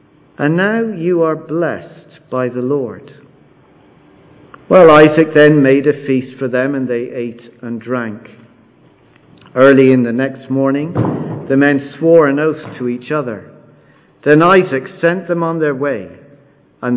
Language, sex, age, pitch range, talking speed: English, male, 50-69, 115-150 Hz, 150 wpm